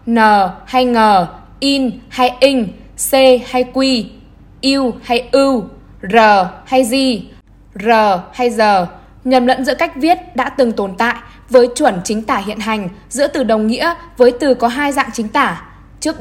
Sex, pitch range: female, 225-275 Hz